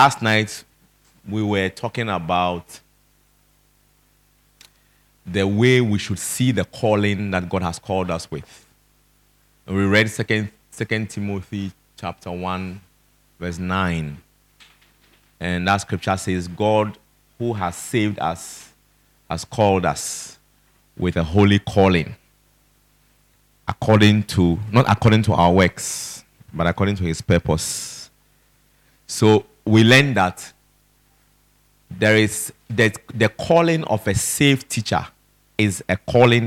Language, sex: English, male